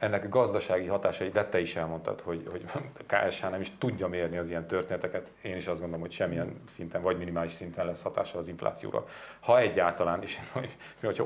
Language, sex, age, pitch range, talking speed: Hungarian, male, 40-59, 85-95 Hz, 190 wpm